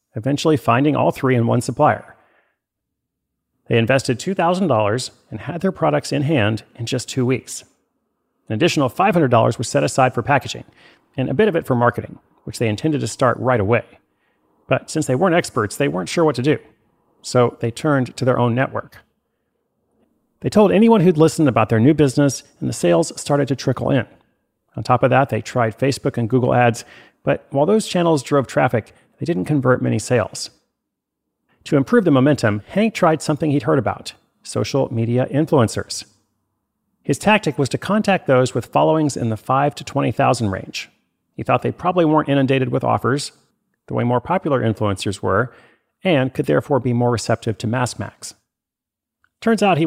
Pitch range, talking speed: 115-155 Hz, 180 wpm